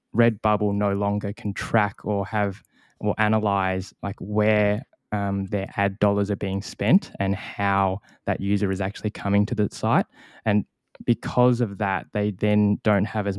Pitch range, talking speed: 100-110 Hz, 165 wpm